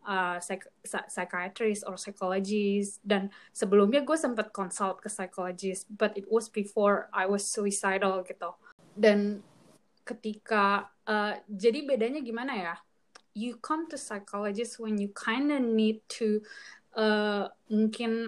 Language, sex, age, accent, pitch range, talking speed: Indonesian, female, 20-39, native, 200-230 Hz, 125 wpm